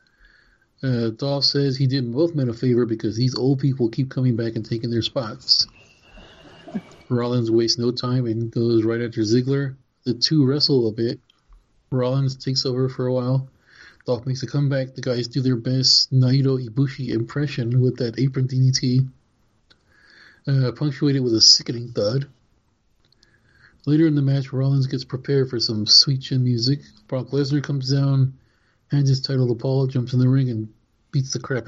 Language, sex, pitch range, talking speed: English, male, 120-140 Hz, 170 wpm